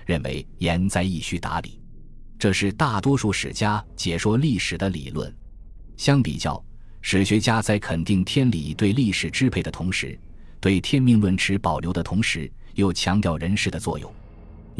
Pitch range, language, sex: 85-115 Hz, Chinese, male